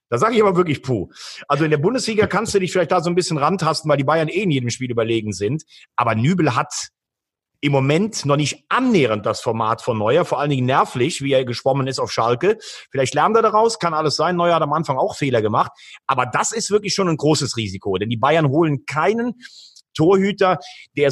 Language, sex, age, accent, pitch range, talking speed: German, male, 40-59, German, 135-180 Hz, 225 wpm